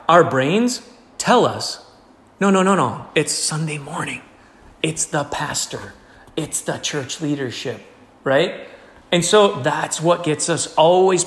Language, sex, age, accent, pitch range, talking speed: English, male, 40-59, American, 145-205 Hz, 140 wpm